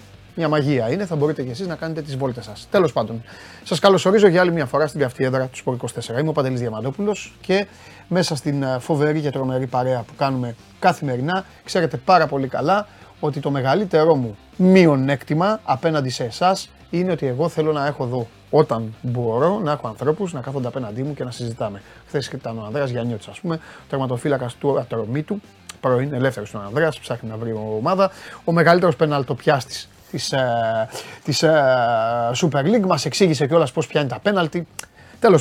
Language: Greek